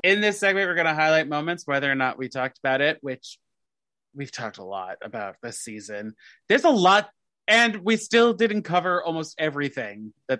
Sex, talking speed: male, 195 wpm